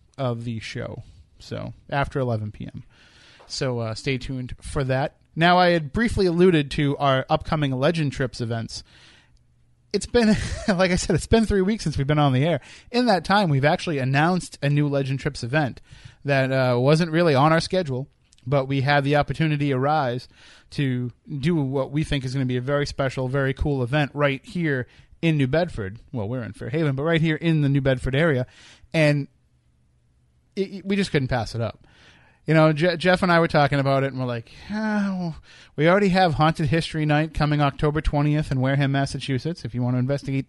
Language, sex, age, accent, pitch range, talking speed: English, male, 30-49, American, 125-155 Hz, 195 wpm